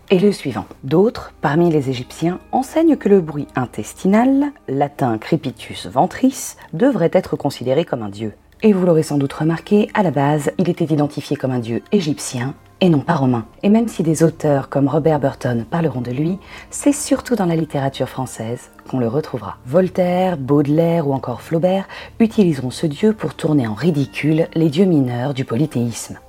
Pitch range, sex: 135-185 Hz, female